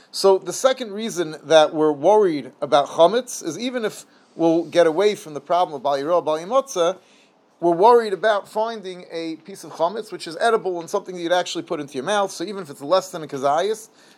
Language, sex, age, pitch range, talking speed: English, male, 30-49, 155-195 Hz, 205 wpm